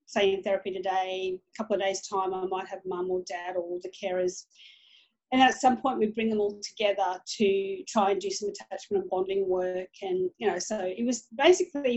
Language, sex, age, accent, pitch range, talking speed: English, female, 40-59, Australian, 195-255 Hz, 215 wpm